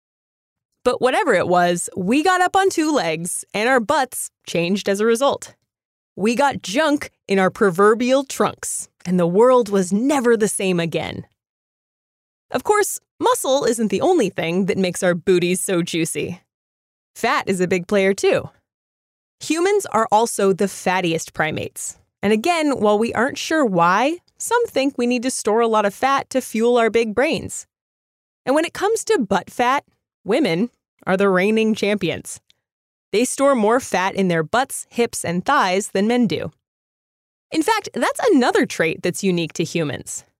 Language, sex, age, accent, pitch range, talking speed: English, female, 20-39, American, 180-270 Hz, 170 wpm